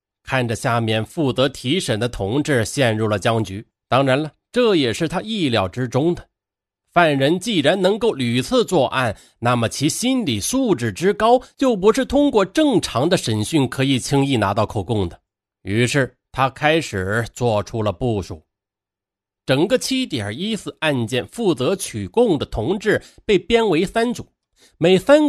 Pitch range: 105-175 Hz